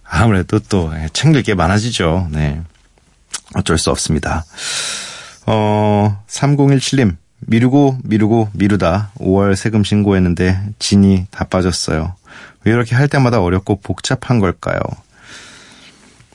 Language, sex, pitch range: Korean, male, 90-135 Hz